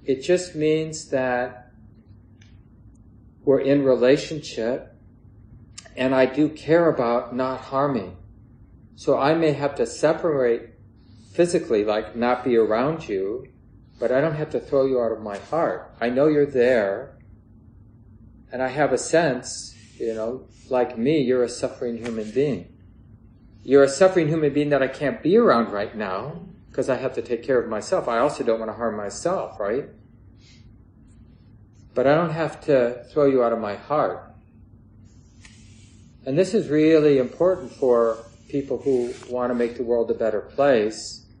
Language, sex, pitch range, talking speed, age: English, male, 110-130 Hz, 160 wpm, 40-59